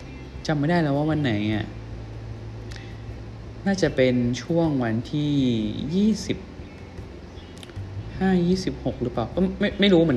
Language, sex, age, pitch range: Thai, male, 20-39, 110-130 Hz